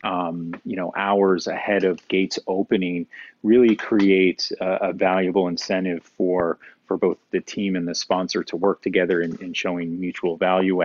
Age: 30-49